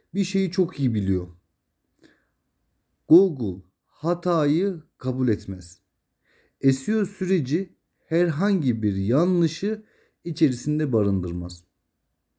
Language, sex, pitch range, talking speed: Turkish, male, 105-160 Hz, 75 wpm